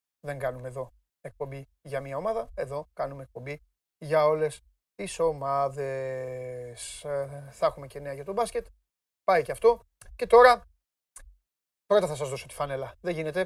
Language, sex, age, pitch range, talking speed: Greek, male, 30-49, 140-210 Hz, 150 wpm